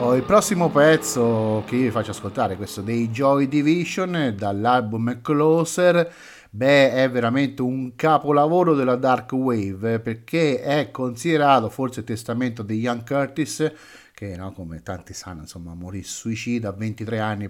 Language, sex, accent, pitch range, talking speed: Italian, male, native, 110-140 Hz, 145 wpm